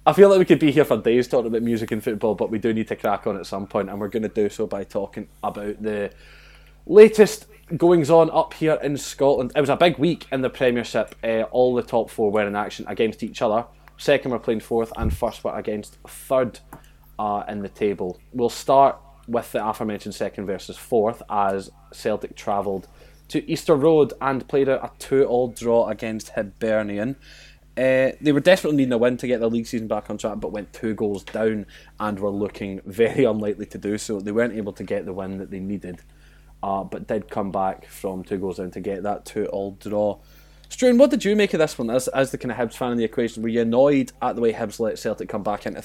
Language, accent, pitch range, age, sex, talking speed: English, British, 105-130 Hz, 20-39, male, 230 wpm